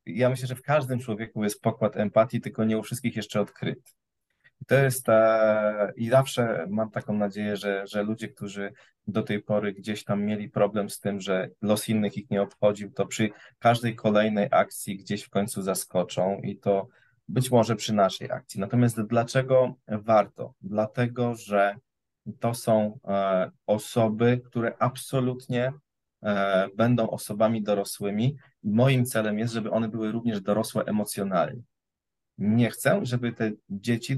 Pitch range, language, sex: 105-120 Hz, Polish, male